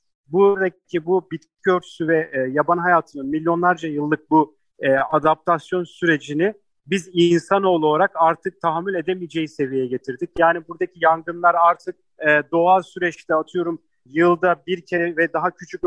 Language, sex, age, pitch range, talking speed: Turkish, male, 40-59, 155-185 Hz, 135 wpm